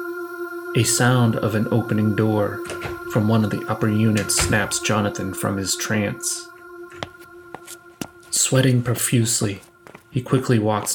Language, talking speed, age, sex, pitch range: English, 120 wpm, 30-49, male, 105-125 Hz